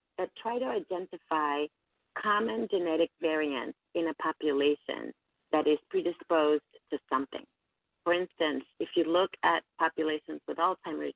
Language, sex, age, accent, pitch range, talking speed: English, female, 40-59, American, 145-185 Hz, 130 wpm